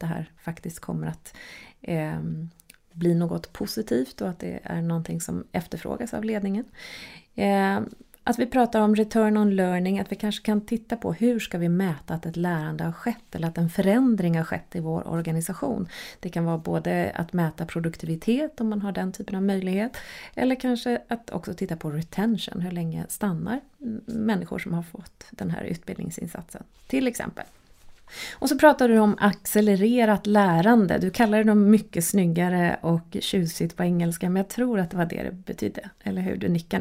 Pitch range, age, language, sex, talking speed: 170-215 Hz, 30-49, Swedish, female, 180 wpm